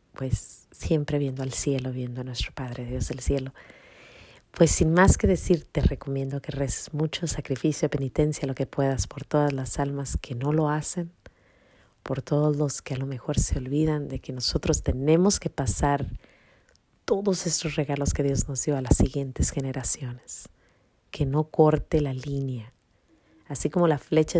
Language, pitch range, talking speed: Spanish, 130-150 Hz, 170 wpm